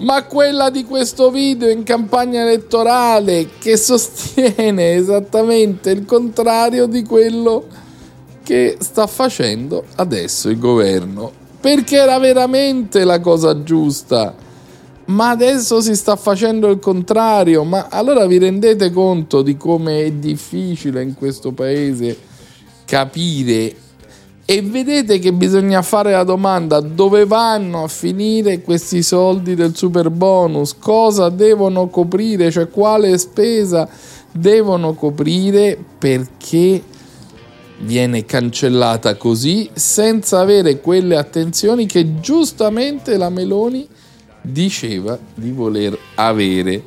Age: 50-69